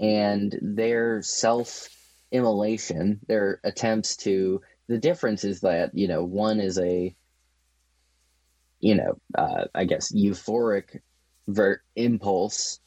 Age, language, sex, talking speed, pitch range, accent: 20-39, English, male, 100 wpm, 85-110 Hz, American